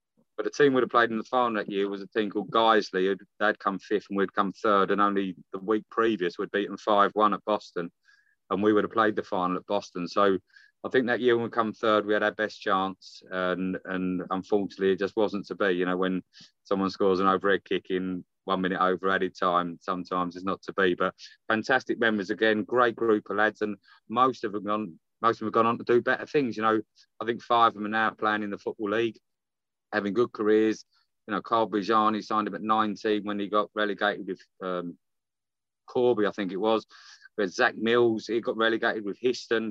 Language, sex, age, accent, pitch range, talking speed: English, male, 30-49, British, 95-115 Hz, 230 wpm